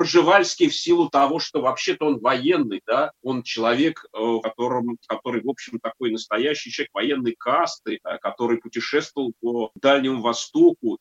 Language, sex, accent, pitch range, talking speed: Russian, male, native, 115-150 Hz, 130 wpm